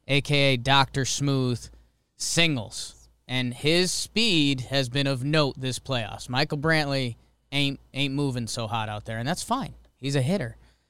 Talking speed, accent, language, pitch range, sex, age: 155 wpm, American, English, 120-160 Hz, male, 20-39